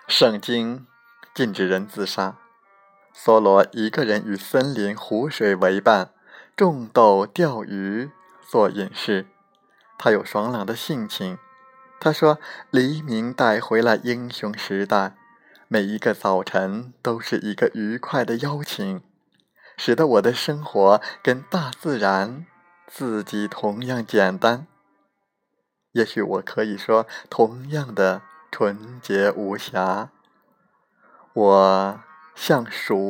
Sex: male